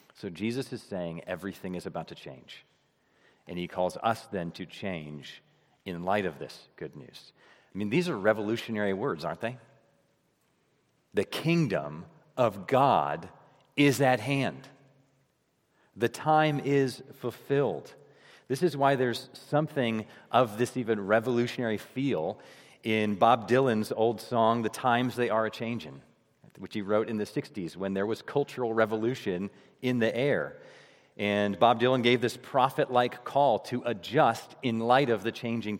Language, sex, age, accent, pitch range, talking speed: English, male, 40-59, American, 110-130 Hz, 150 wpm